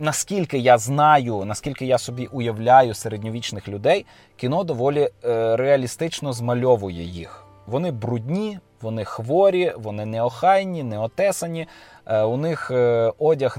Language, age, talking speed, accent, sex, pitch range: Ukrainian, 20-39, 105 wpm, native, male, 110-145 Hz